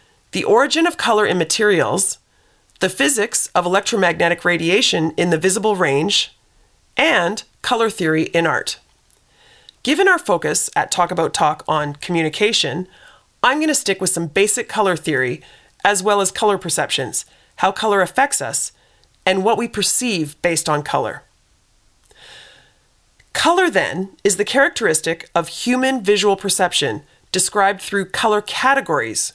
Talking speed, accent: 135 wpm, American